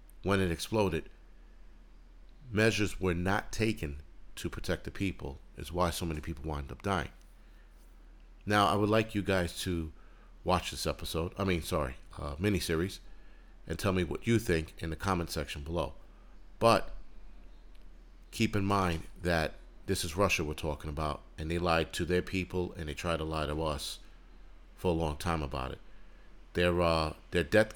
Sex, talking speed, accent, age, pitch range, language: male, 175 wpm, American, 50-69, 80-95 Hz, English